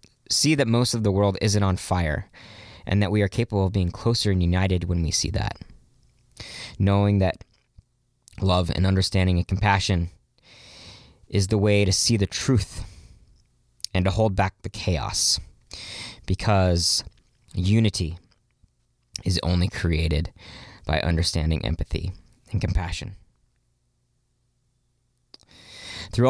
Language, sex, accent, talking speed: English, male, American, 125 wpm